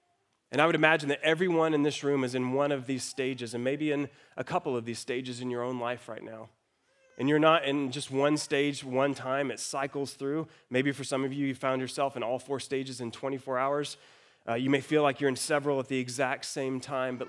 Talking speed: 245 wpm